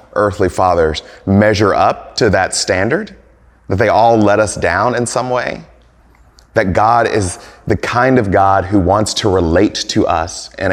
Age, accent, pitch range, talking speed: 30-49, American, 90-110 Hz, 170 wpm